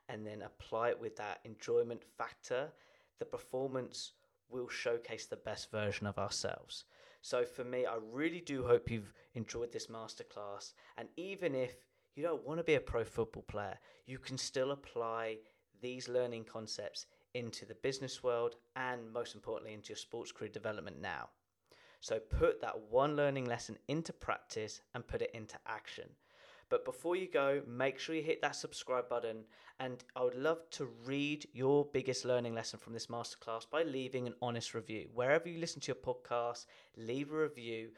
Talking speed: 175 wpm